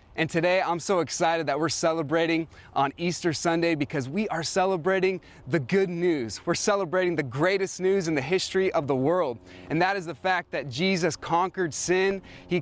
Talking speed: 185 wpm